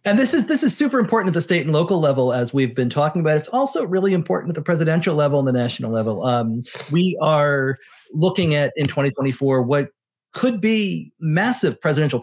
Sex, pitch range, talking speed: male, 130-170 Hz, 205 wpm